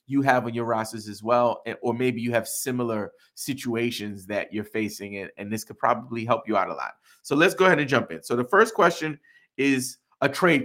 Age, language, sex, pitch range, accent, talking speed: 30-49, English, male, 115-155 Hz, American, 225 wpm